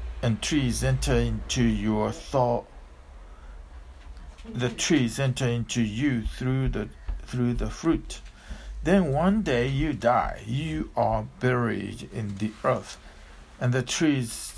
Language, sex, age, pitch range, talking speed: English, male, 60-79, 110-140 Hz, 125 wpm